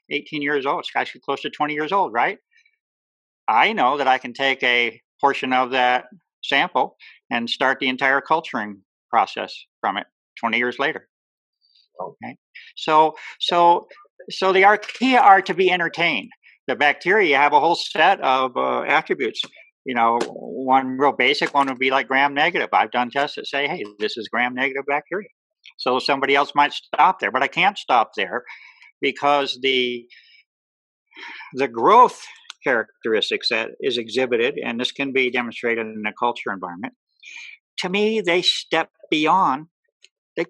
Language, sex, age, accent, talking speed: English, male, 50-69, American, 155 wpm